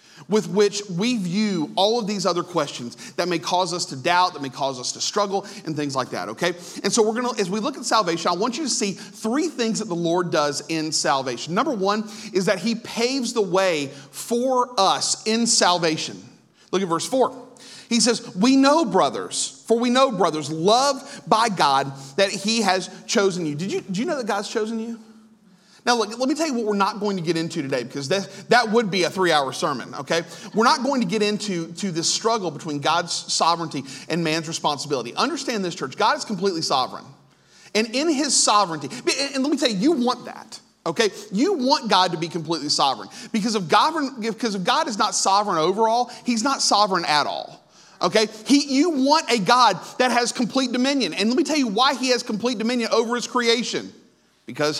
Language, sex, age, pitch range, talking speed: English, male, 40-59, 175-240 Hz, 205 wpm